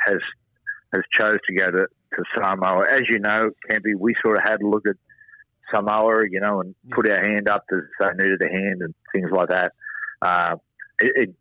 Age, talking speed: 50-69, 205 wpm